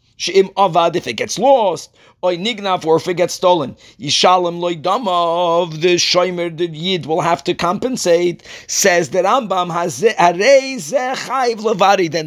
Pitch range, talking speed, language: 165-230 Hz, 105 wpm, English